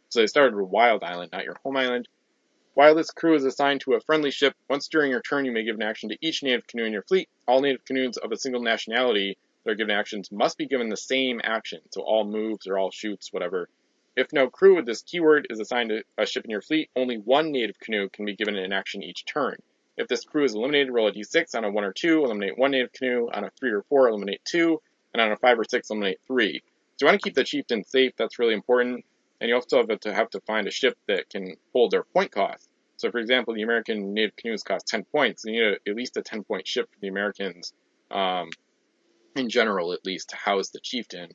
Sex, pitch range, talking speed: male, 110-150 Hz, 250 wpm